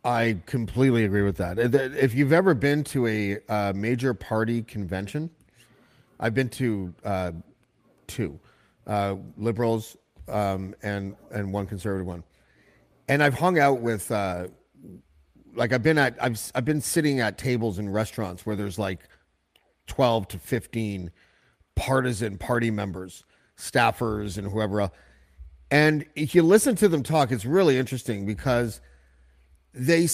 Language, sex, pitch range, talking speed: English, male, 100-140 Hz, 140 wpm